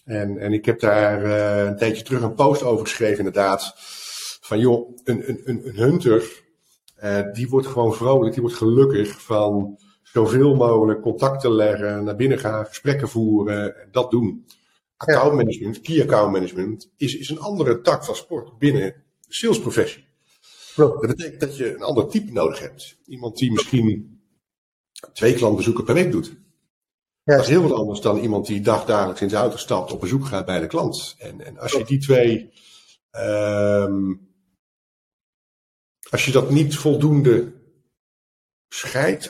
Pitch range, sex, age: 105-135 Hz, male, 50-69